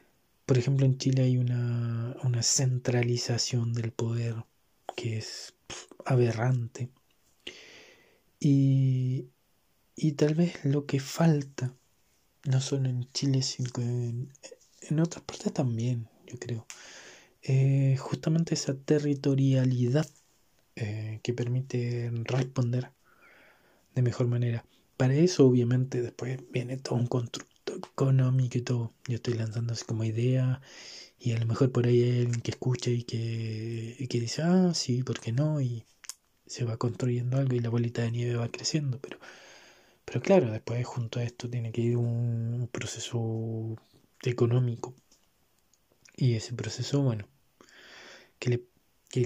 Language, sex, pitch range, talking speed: Spanish, male, 120-135 Hz, 140 wpm